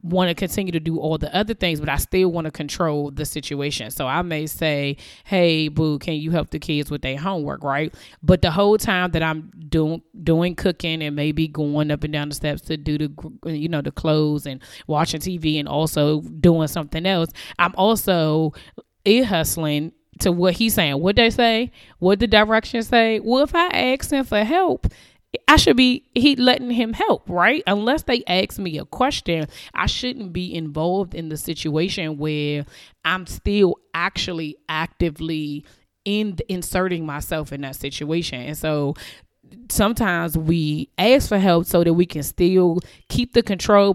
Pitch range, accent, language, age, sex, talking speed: 150-195 Hz, American, English, 20-39, female, 180 wpm